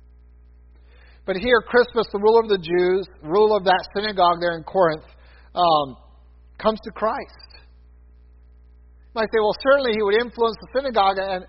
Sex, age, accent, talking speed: male, 50-69, American, 160 wpm